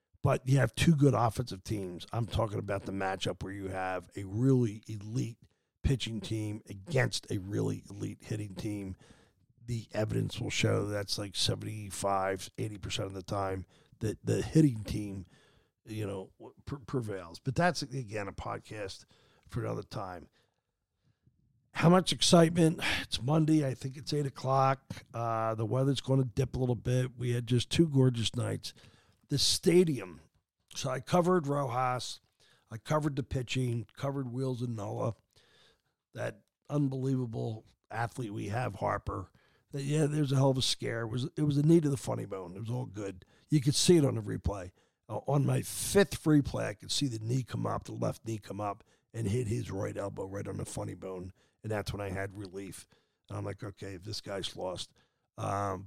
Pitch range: 100-135 Hz